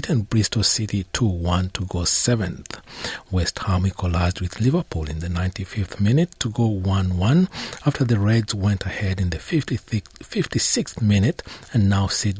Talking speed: 150 wpm